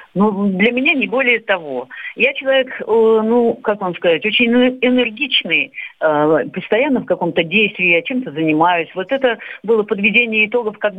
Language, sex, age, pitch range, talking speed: Russian, female, 40-59, 160-230 Hz, 150 wpm